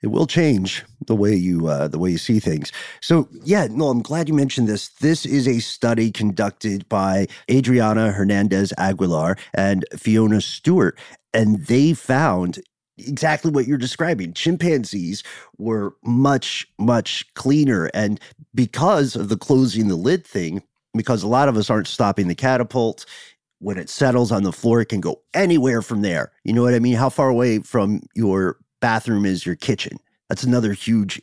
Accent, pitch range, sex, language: American, 100-130 Hz, male, English